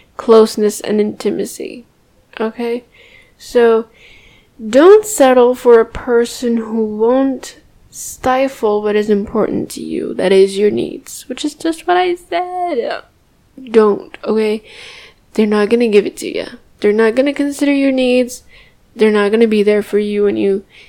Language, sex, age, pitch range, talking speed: English, female, 10-29, 210-260 Hz, 150 wpm